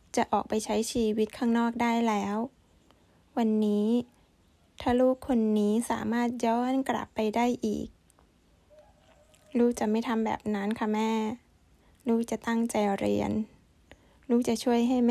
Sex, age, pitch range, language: female, 10-29, 210-235 Hz, Thai